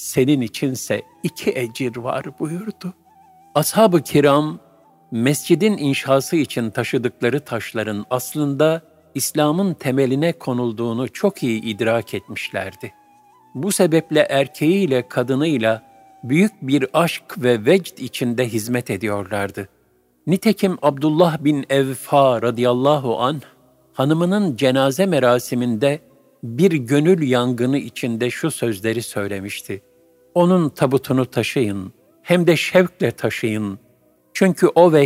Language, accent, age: Turkish, native, 50-69